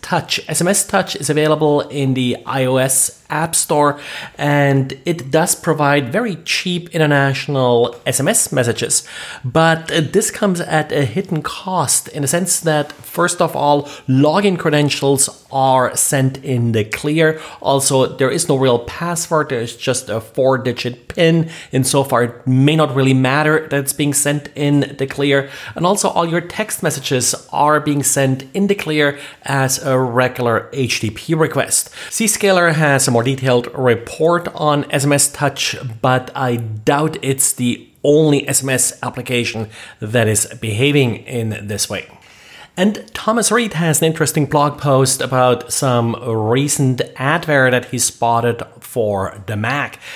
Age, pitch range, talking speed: 30-49, 130-155 Hz, 150 wpm